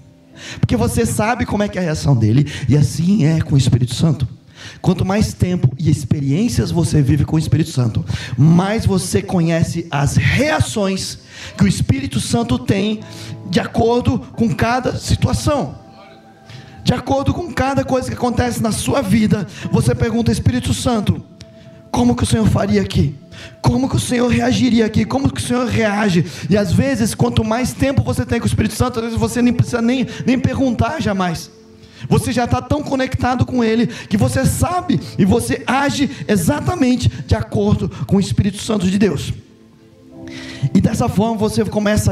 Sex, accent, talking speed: male, Brazilian, 175 wpm